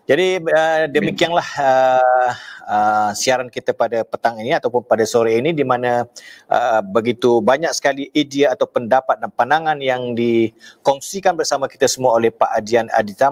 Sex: male